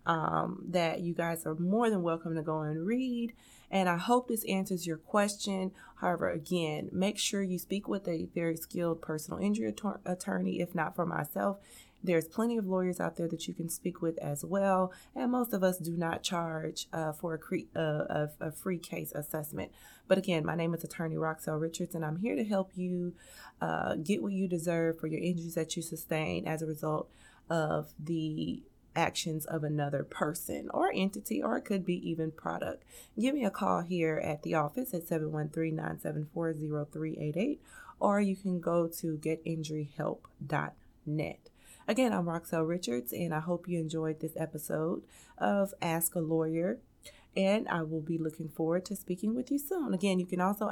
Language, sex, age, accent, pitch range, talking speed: English, female, 30-49, American, 160-190 Hz, 180 wpm